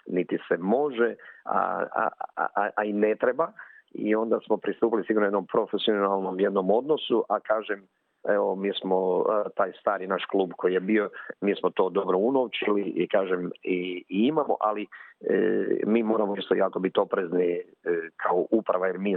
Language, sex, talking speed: Croatian, male, 170 wpm